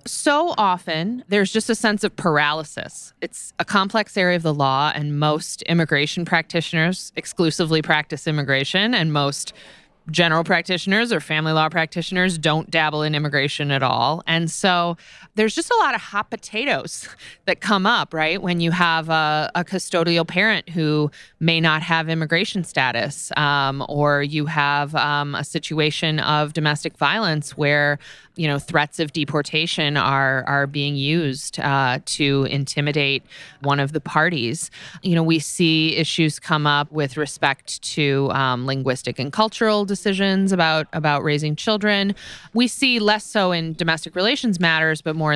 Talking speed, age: 155 wpm, 20-39